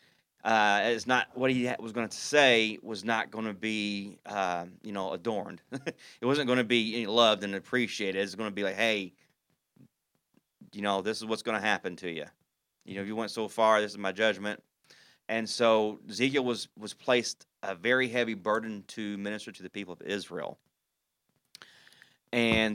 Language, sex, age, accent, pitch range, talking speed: English, male, 30-49, American, 105-125 Hz, 185 wpm